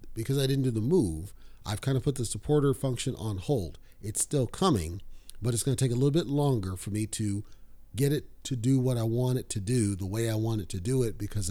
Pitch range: 110-135 Hz